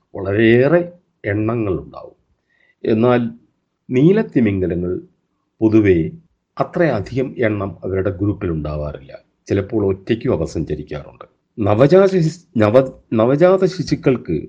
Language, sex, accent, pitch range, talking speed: Malayalam, male, native, 90-135 Hz, 65 wpm